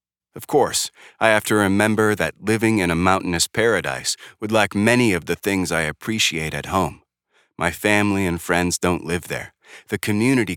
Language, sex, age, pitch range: English, male, 30-49, 80-110 Hz